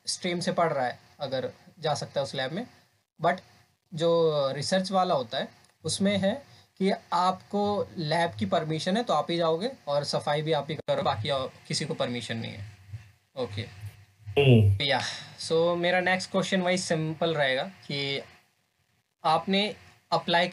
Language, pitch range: Hindi, 135-170 Hz